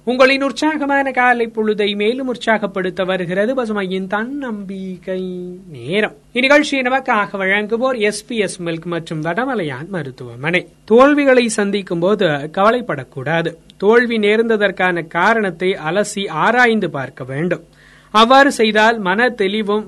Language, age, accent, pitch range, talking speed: Tamil, 30-49, native, 175-230 Hz, 95 wpm